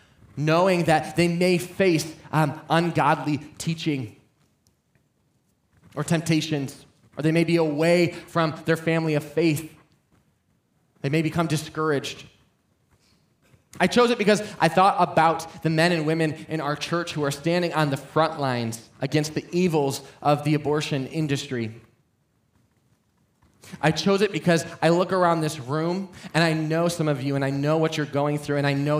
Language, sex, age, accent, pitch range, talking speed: English, male, 20-39, American, 145-170 Hz, 160 wpm